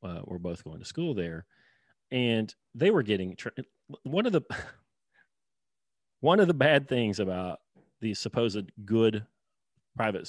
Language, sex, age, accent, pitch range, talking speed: English, male, 40-59, American, 90-110 Hz, 145 wpm